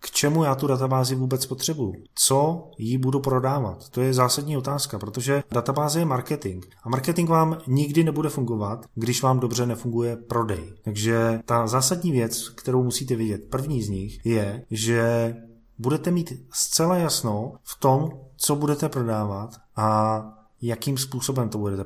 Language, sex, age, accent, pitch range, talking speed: Czech, male, 20-39, native, 115-140 Hz, 155 wpm